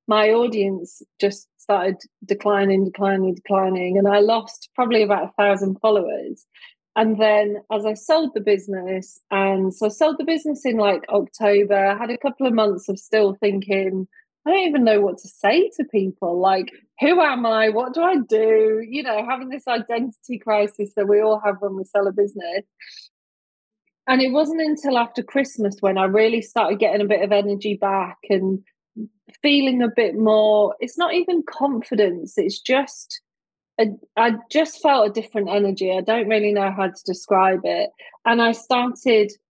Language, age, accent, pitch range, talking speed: English, 30-49, British, 200-240 Hz, 175 wpm